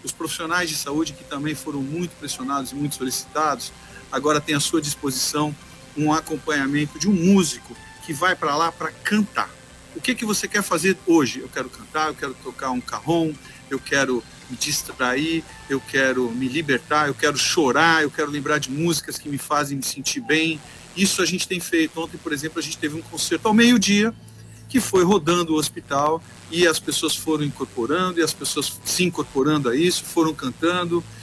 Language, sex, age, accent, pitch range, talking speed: Portuguese, male, 50-69, Brazilian, 135-170 Hz, 190 wpm